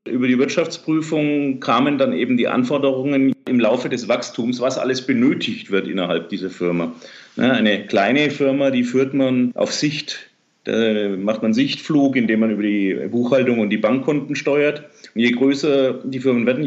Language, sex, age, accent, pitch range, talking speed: German, male, 40-59, German, 120-145 Hz, 165 wpm